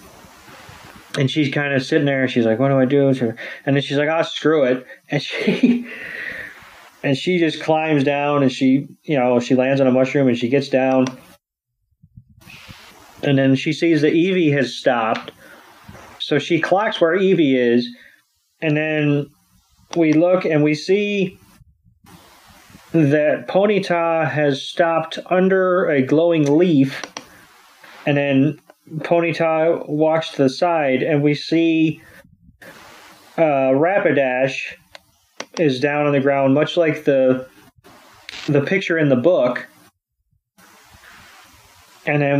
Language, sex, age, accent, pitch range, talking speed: English, male, 30-49, American, 135-165 Hz, 135 wpm